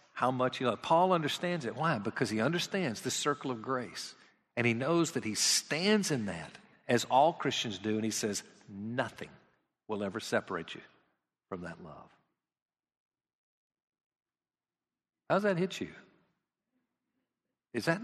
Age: 50-69